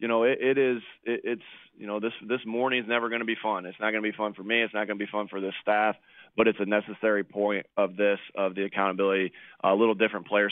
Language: English